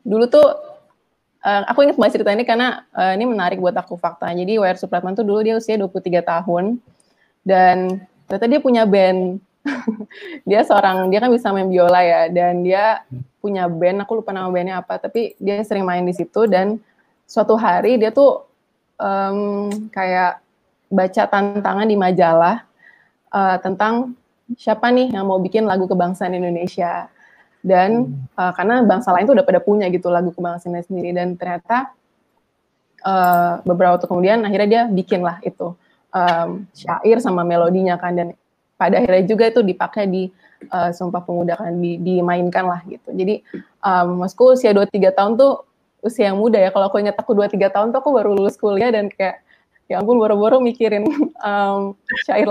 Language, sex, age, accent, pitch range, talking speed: Indonesian, female, 20-39, native, 180-225 Hz, 170 wpm